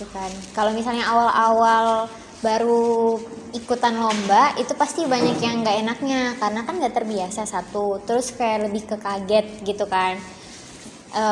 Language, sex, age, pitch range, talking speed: Indonesian, male, 20-39, 210-250 Hz, 140 wpm